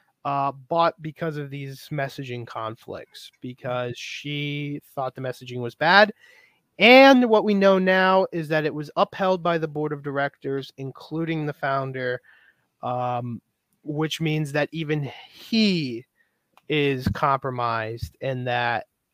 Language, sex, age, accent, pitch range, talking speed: English, male, 30-49, American, 130-170 Hz, 130 wpm